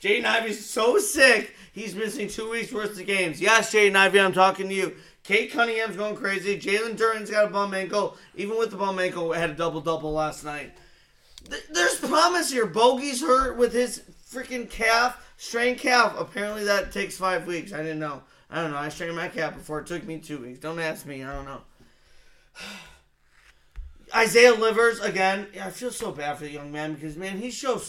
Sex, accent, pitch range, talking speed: male, American, 185-250 Hz, 200 wpm